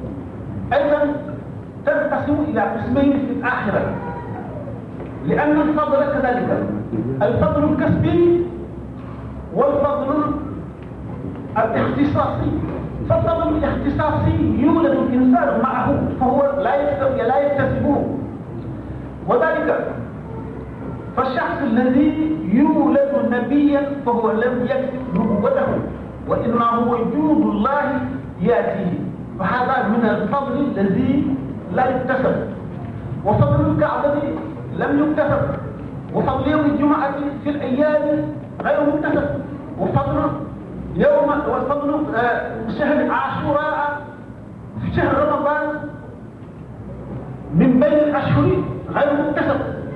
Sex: male